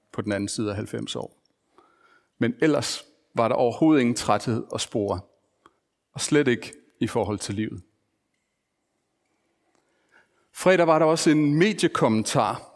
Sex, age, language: male, 40-59, Danish